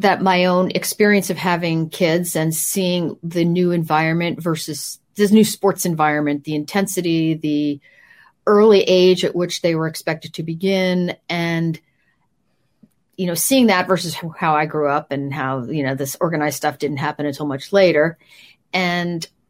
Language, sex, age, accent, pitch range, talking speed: English, female, 40-59, American, 155-195 Hz, 150 wpm